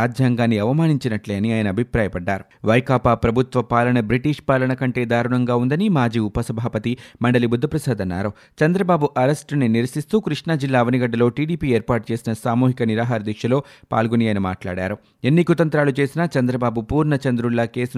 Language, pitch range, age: Telugu, 115-140 Hz, 30-49